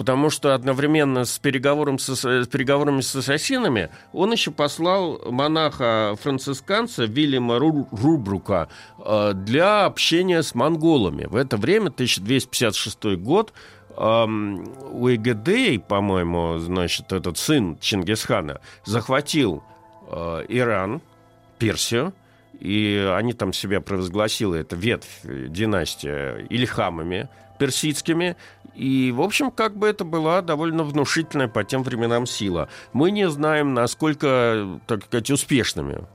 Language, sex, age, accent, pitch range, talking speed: Russian, male, 50-69, native, 105-150 Hz, 105 wpm